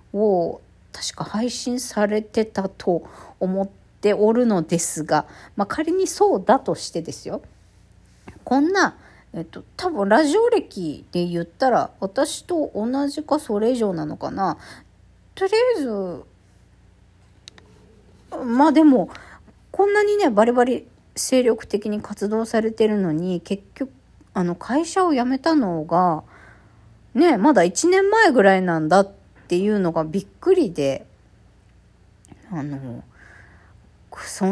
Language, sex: Japanese, female